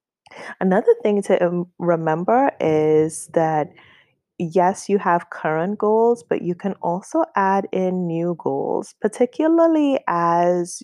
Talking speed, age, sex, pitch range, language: 115 wpm, 20-39, female, 160-200 Hz, English